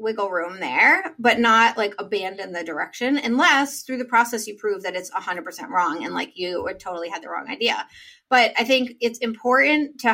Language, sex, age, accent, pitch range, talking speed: English, female, 30-49, American, 195-255 Hz, 200 wpm